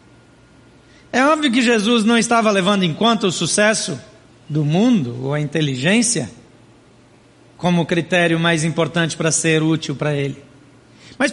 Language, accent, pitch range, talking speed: Portuguese, Brazilian, 150-215 Hz, 140 wpm